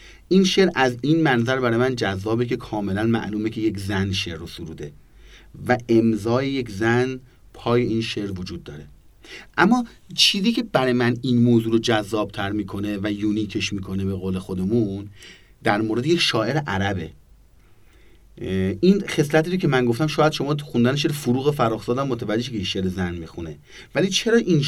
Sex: male